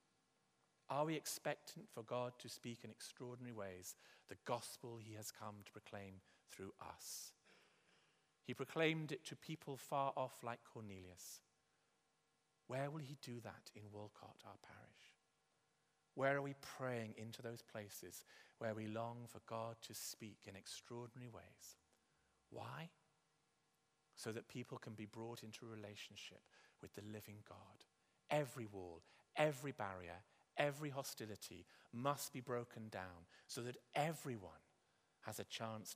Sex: male